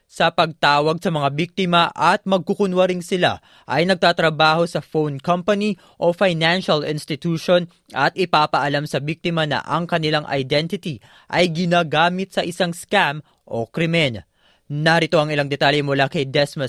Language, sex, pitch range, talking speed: Filipino, female, 140-175 Hz, 135 wpm